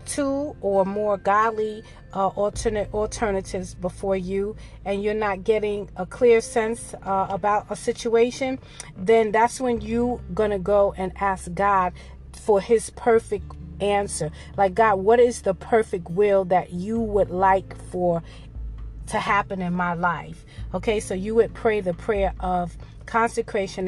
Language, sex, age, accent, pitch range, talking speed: English, female, 40-59, American, 180-215 Hz, 150 wpm